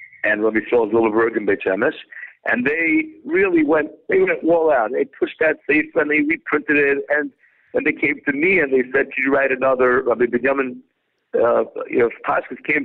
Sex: male